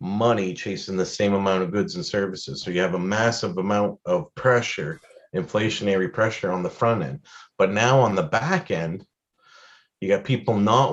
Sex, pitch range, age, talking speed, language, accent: male, 100-125 Hz, 40-59, 180 wpm, English, American